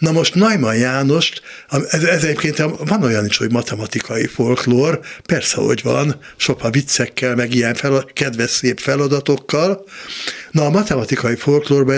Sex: male